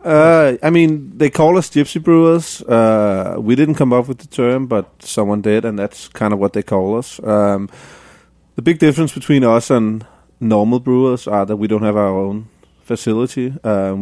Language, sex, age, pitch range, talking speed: English, male, 30-49, 105-125 Hz, 195 wpm